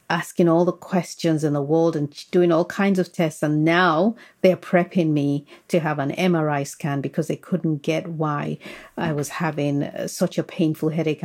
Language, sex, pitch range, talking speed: English, female, 150-175 Hz, 185 wpm